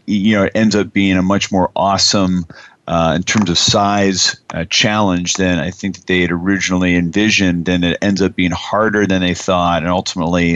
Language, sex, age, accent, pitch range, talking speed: English, male, 40-59, American, 90-105 Hz, 205 wpm